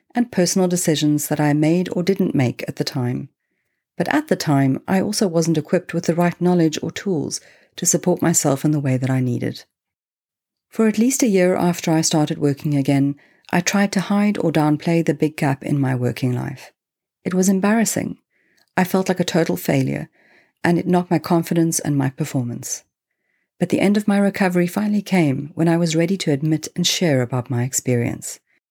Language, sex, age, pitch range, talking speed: English, female, 50-69, 140-185 Hz, 195 wpm